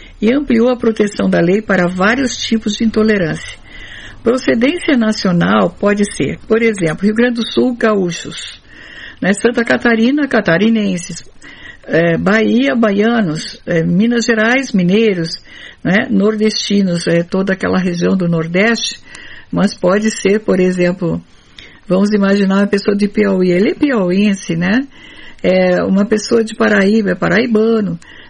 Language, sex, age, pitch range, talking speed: Portuguese, female, 60-79, 180-230 Hz, 135 wpm